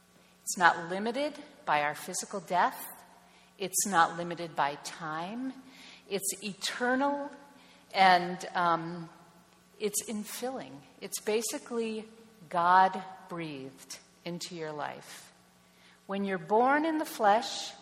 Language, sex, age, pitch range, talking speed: English, female, 50-69, 155-215 Hz, 105 wpm